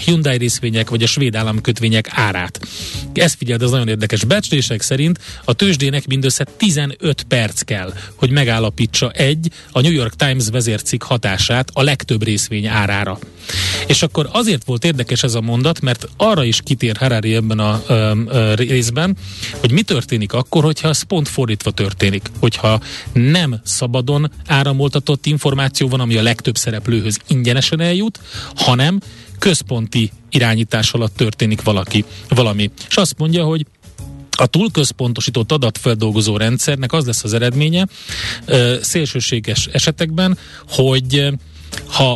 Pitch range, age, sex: 110-145 Hz, 30-49, male